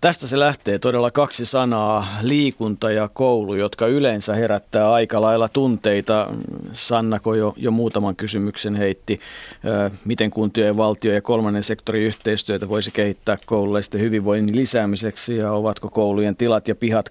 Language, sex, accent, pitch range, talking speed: Finnish, male, native, 105-120 Hz, 140 wpm